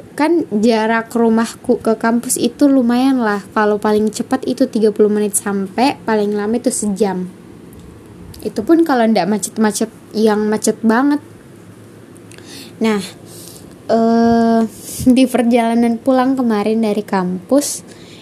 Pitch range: 215-270 Hz